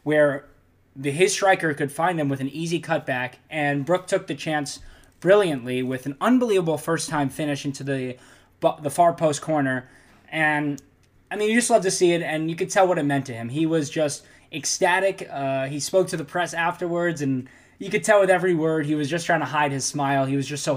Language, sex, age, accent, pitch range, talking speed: English, male, 20-39, American, 135-175 Hz, 215 wpm